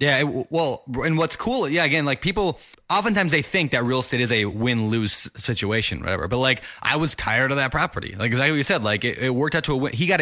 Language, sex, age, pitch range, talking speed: English, male, 20-39, 110-145 Hz, 260 wpm